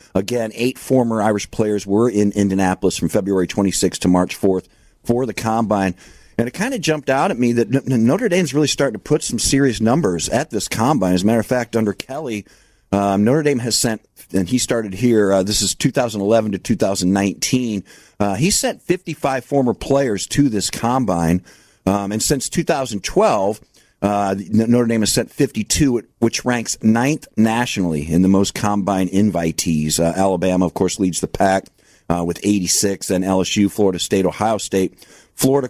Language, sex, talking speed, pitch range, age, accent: English, male, 175 wpm, 95-120 Hz, 50-69, American